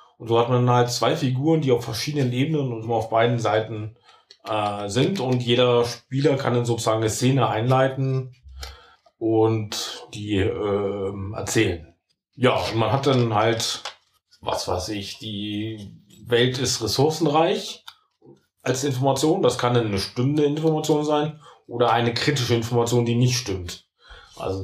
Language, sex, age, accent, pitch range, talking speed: German, male, 30-49, German, 110-125 Hz, 150 wpm